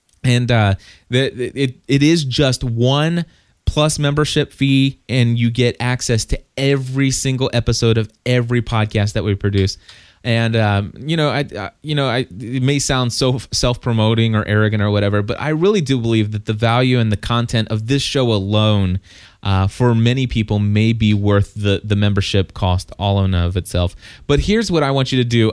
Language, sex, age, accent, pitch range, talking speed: English, male, 20-39, American, 105-135 Hz, 190 wpm